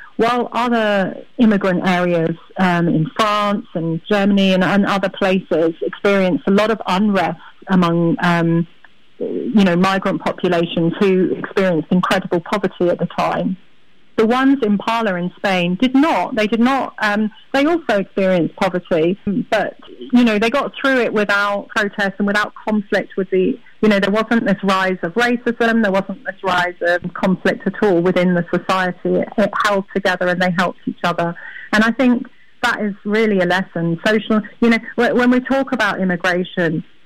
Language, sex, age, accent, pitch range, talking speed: English, female, 40-59, British, 180-215 Hz, 170 wpm